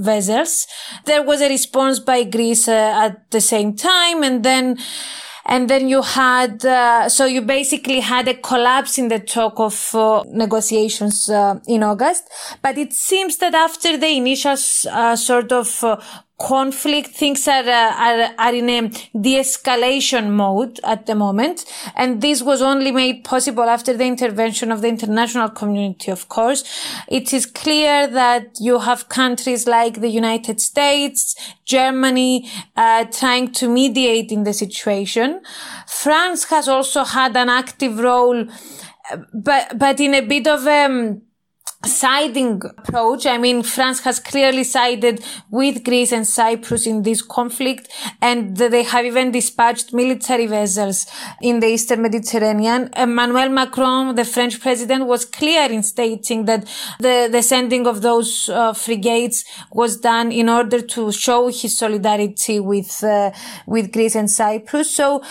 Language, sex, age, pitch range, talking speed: English, female, 30-49, 225-265 Hz, 150 wpm